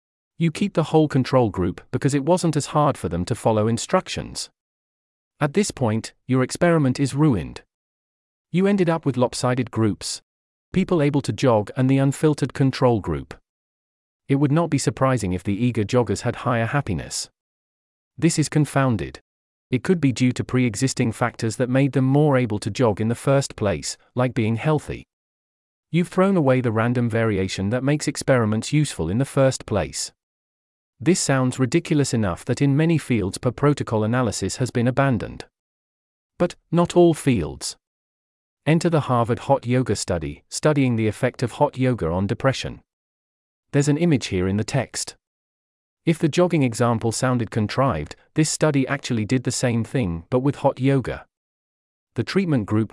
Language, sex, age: English, male, 40-59